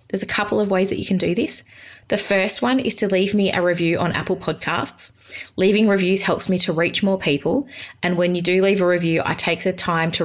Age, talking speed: 20-39, 245 wpm